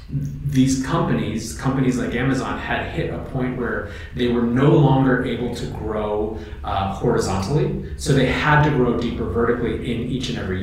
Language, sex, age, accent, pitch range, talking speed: English, male, 30-49, American, 105-135 Hz, 170 wpm